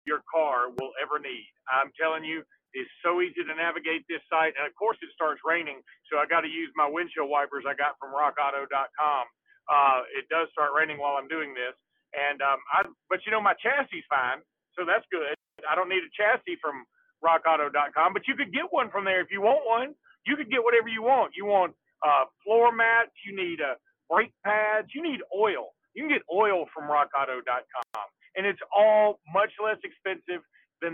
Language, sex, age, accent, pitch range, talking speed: English, male, 40-59, American, 155-210 Hz, 205 wpm